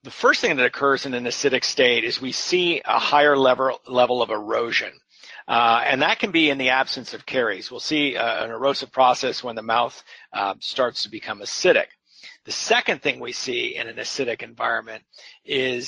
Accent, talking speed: American, 195 wpm